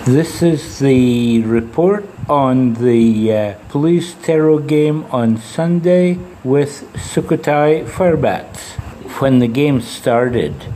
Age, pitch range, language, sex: 60-79, 110-130 Hz, English, male